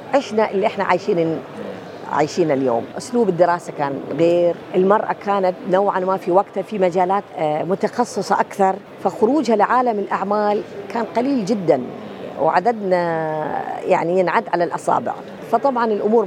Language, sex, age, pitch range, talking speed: Arabic, female, 50-69, 180-220 Hz, 120 wpm